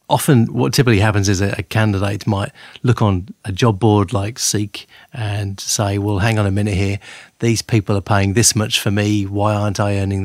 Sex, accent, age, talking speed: male, British, 30-49, 205 wpm